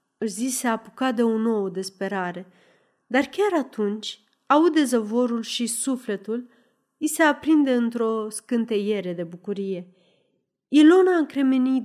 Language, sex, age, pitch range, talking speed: Romanian, female, 30-49, 200-255 Hz, 120 wpm